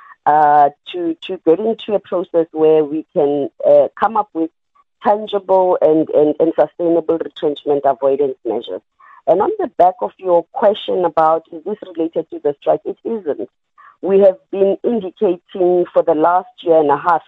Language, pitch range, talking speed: English, 160-205 Hz, 170 wpm